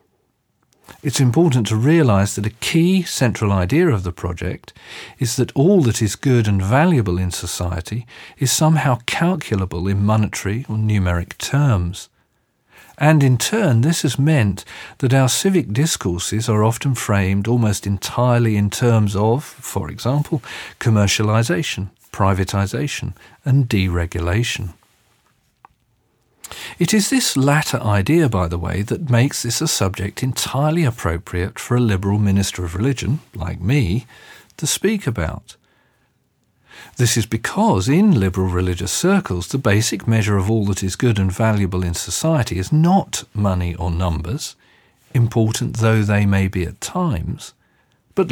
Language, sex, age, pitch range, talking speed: English, male, 40-59, 95-135 Hz, 140 wpm